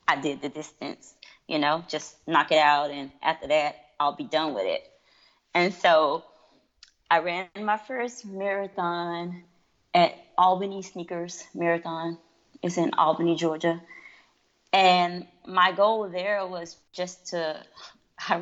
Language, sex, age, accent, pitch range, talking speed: English, female, 20-39, American, 160-190 Hz, 135 wpm